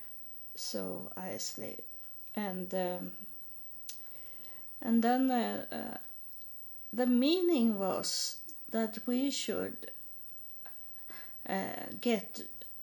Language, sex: English, female